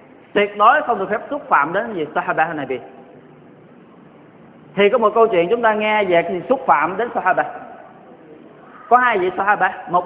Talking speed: 190 wpm